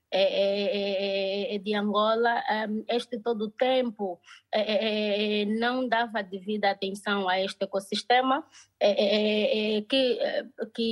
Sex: female